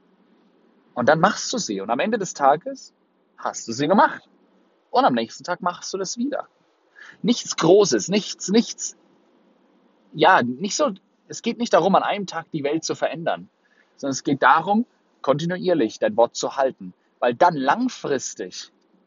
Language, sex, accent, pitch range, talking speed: German, male, German, 145-205 Hz, 165 wpm